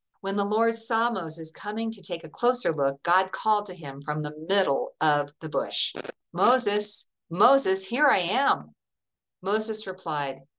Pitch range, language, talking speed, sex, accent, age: 150-200 Hz, English, 160 wpm, female, American, 50-69